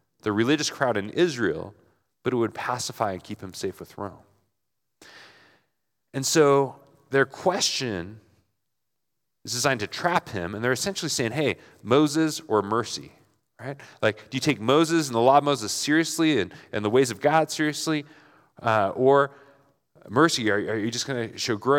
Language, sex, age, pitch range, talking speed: English, male, 30-49, 110-150 Hz, 165 wpm